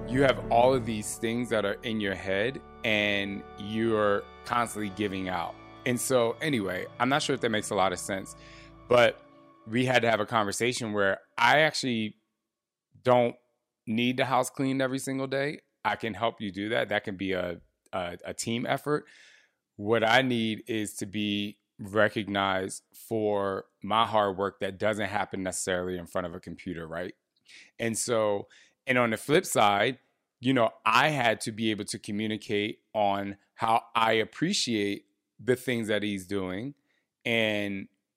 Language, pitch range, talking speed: English, 100-120 Hz, 170 wpm